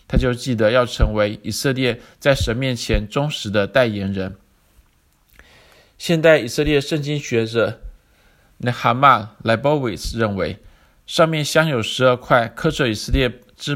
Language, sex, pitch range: Chinese, male, 110-140 Hz